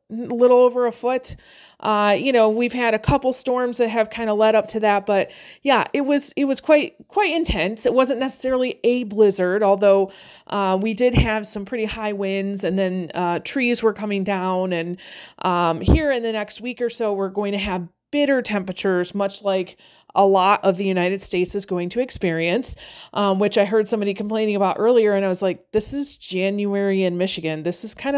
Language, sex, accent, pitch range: English, female, American, 195-270 Hz